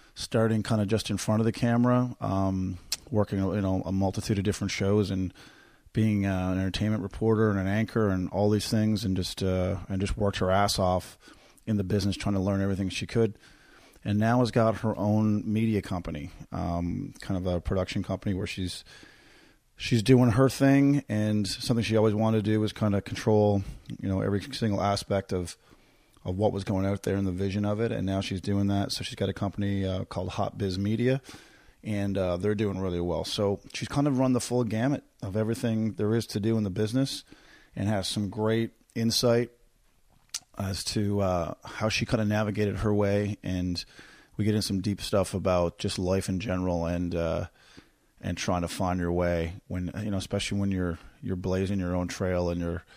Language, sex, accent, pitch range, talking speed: English, male, American, 95-110 Hz, 205 wpm